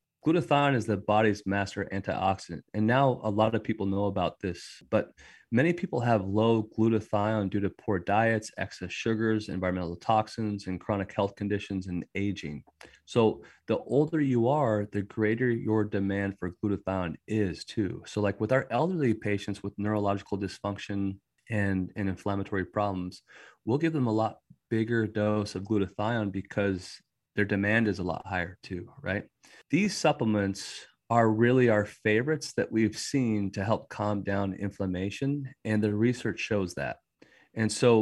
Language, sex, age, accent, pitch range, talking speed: English, male, 30-49, American, 100-115 Hz, 160 wpm